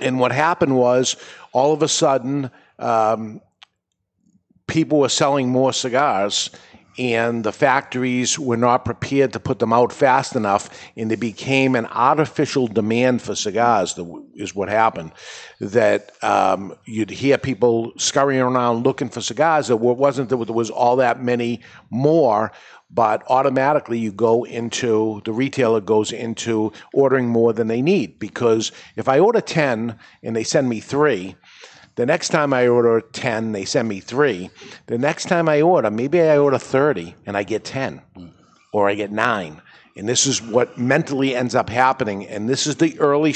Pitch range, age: 115-135 Hz, 50-69